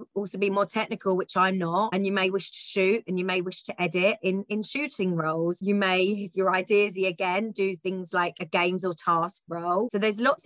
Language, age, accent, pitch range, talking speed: English, 30-49, British, 180-205 Hz, 230 wpm